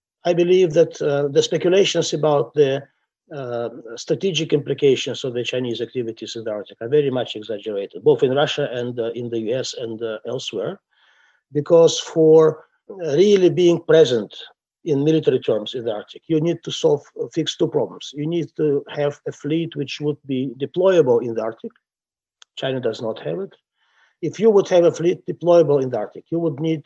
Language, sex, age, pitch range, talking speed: English, male, 50-69, 135-175 Hz, 185 wpm